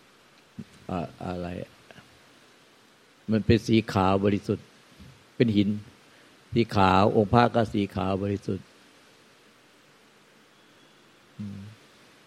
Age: 60-79